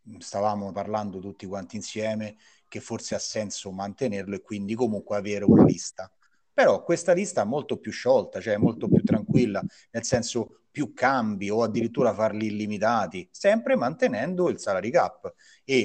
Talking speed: 155 wpm